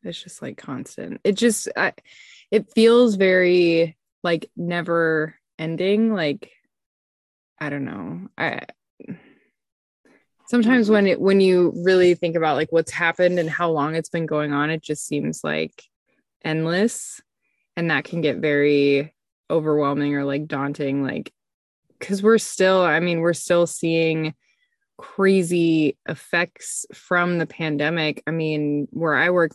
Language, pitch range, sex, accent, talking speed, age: English, 150-185 Hz, female, American, 140 wpm, 20-39